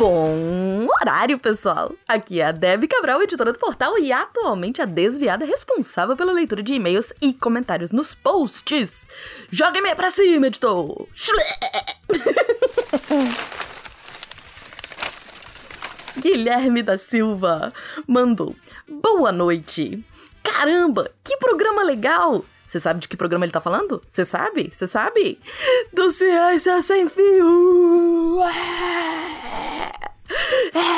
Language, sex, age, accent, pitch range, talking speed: Portuguese, female, 20-39, Brazilian, 215-355 Hz, 110 wpm